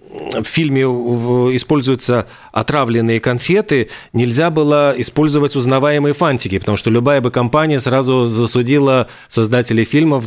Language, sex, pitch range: Russian, male, 120-150 Hz